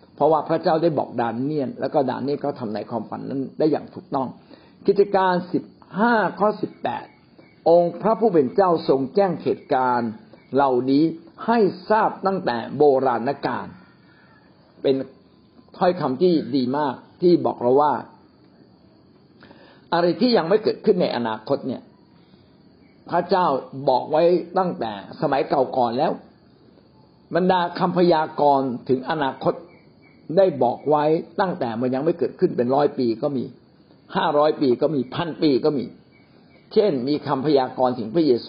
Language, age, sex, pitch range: Thai, 60-79, male, 130-180 Hz